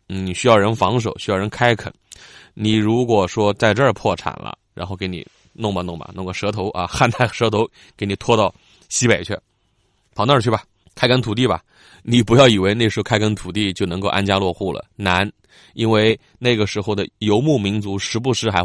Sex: male